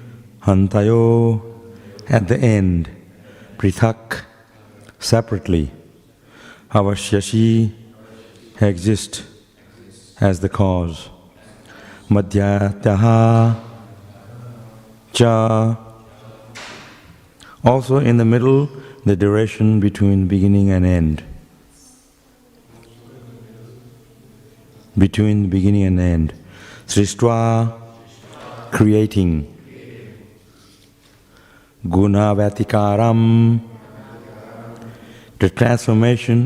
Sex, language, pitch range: male, English, 100-115 Hz